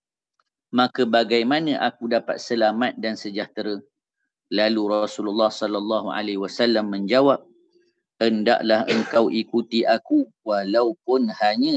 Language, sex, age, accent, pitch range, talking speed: English, male, 40-59, Indonesian, 105-125 Hz, 95 wpm